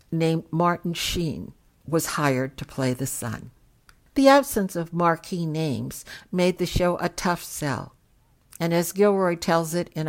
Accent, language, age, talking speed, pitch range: American, English, 60-79, 155 wpm, 145-195 Hz